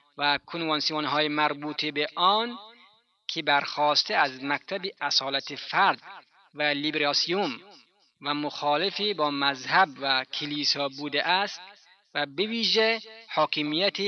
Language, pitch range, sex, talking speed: Persian, 145-195 Hz, male, 100 wpm